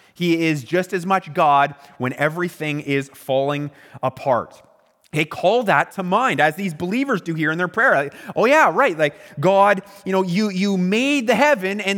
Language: English